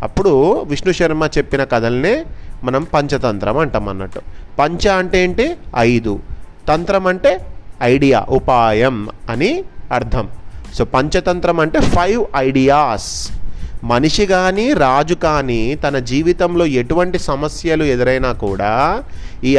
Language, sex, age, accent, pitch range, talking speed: Telugu, male, 30-49, native, 120-165 Hz, 105 wpm